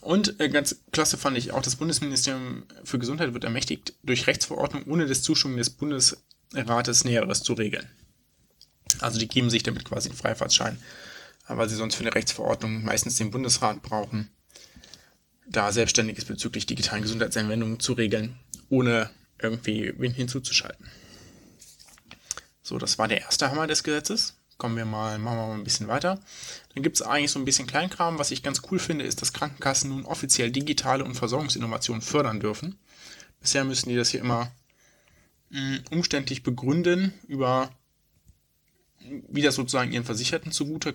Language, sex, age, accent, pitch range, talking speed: German, male, 20-39, German, 115-140 Hz, 155 wpm